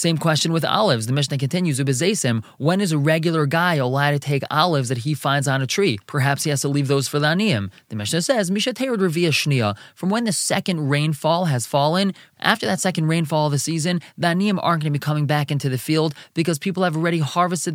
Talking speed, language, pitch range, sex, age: 215 wpm, English, 145-185 Hz, male, 20-39